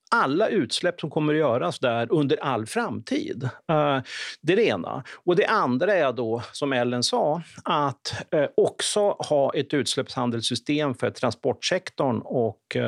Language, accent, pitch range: Swedish, native, 125-195 Hz